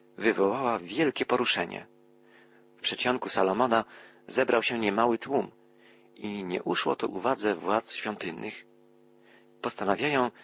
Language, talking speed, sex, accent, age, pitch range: Polish, 105 wpm, male, native, 40-59, 90-120 Hz